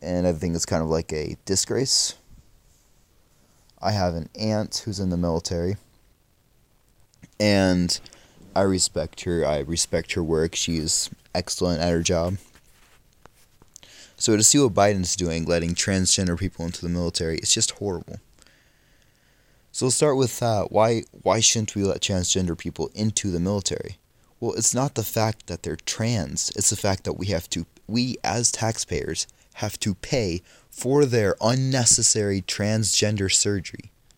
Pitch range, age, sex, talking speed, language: 85-115 Hz, 20-39, male, 155 wpm, English